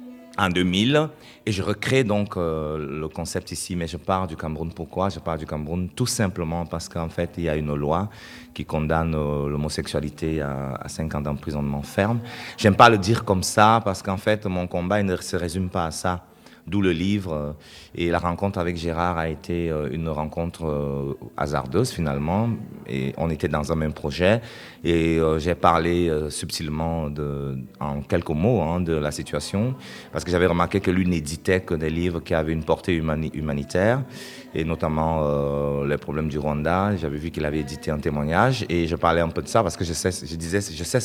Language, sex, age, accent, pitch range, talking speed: French, male, 30-49, French, 80-100 Hz, 200 wpm